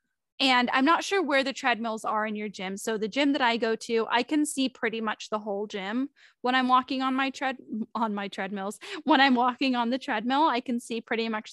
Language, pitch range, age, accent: English, 225-285 Hz, 10-29, American